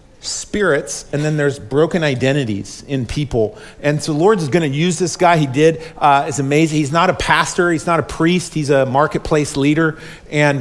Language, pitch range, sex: English, 135-170 Hz, male